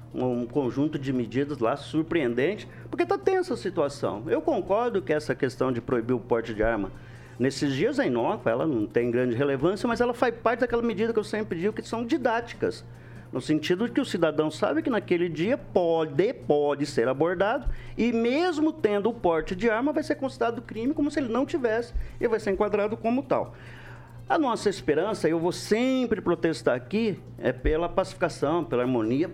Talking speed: 190 wpm